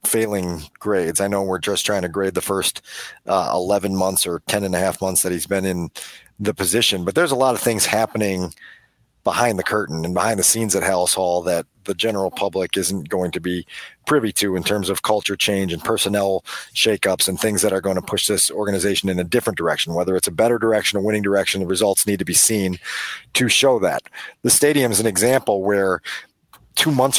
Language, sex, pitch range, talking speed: English, male, 95-115 Hz, 220 wpm